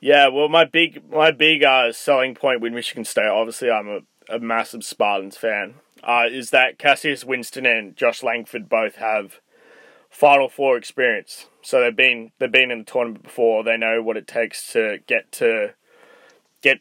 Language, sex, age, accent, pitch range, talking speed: English, male, 20-39, Australian, 115-155 Hz, 180 wpm